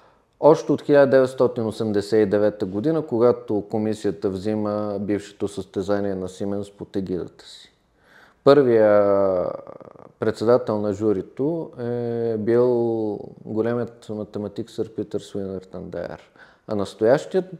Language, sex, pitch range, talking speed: Bulgarian, male, 100-115 Hz, 95 wpm